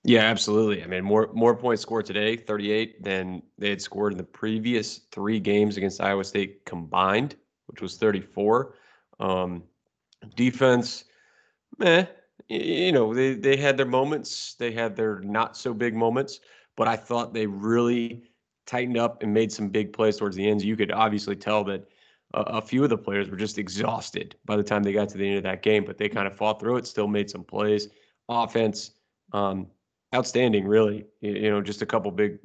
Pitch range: 100-115 Hz